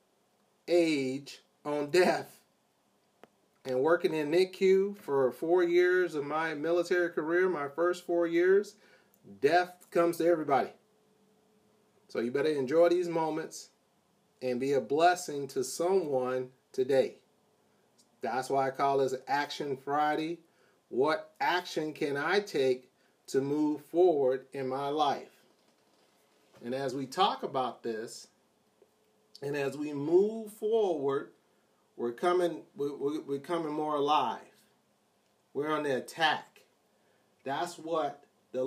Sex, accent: male, American